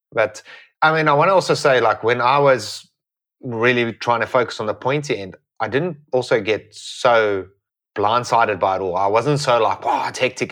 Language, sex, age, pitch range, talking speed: English, male, 30-49, 115-155 Hz, 200 wpm